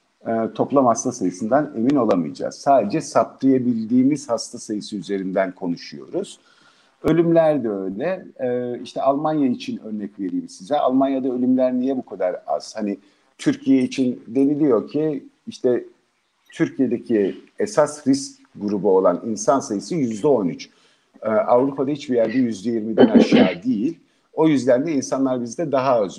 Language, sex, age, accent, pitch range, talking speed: Turkish, male, 50-69, native, 110-155 Hz, 130 wpm